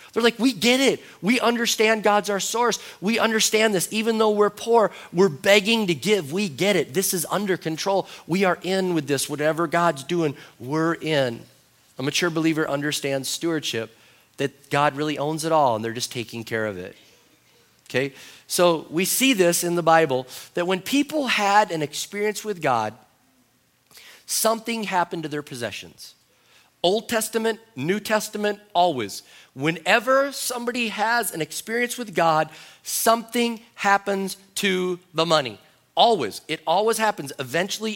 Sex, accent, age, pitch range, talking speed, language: male, American, 40-59, 160-215 Hz, 155 wpm, English